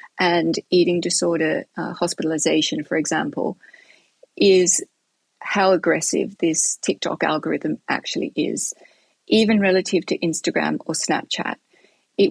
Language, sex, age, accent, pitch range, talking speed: English, female, 40-59, Australian, 180-220 Hz, 105 wpm